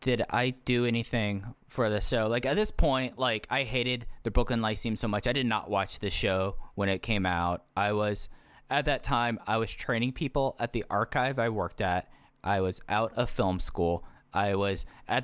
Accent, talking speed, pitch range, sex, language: American, 215 wpm, 100-130 Hz, male, English